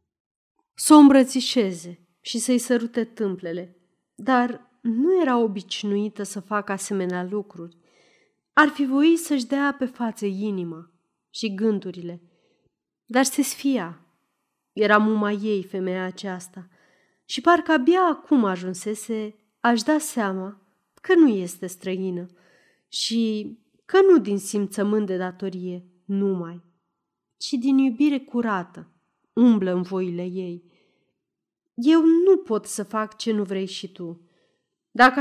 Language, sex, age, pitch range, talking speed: Romanian, female, 30-49, 185-260 Hz, 120 wpm